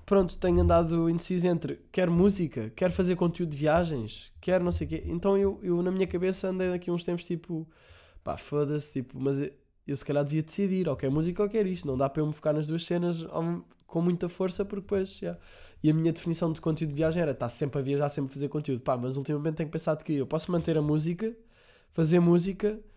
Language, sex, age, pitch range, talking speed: Portuguese, male, 20-39, 140-175 Hz, 245 wpm